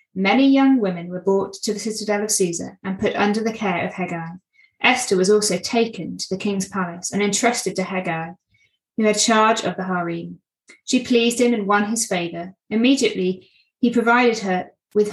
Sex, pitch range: female, 185-230 Hz